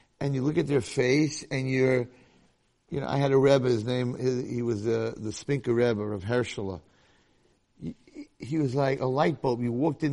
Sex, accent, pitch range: male, American, 125-195 Hz